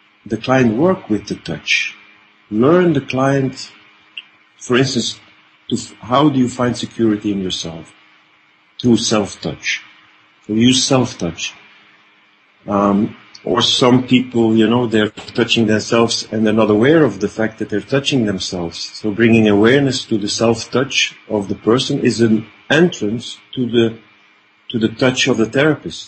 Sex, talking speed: male, 155 wpm